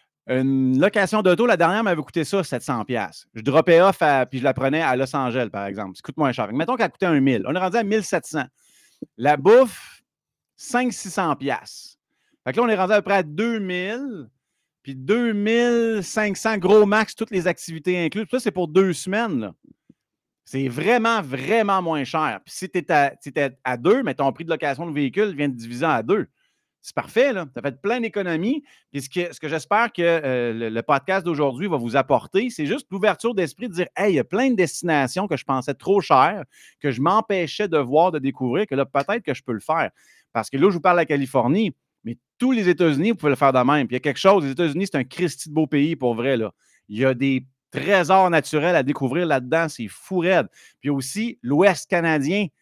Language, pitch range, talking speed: French, 140-200 Hz, 220 wpm